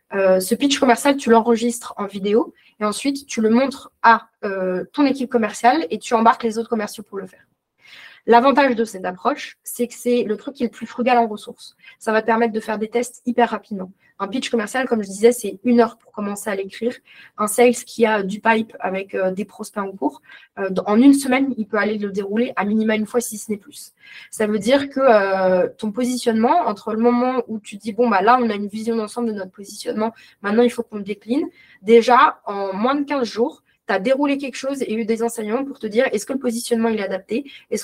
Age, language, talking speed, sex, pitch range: 20-39, French, 235 wpm, female, 210-250 Hz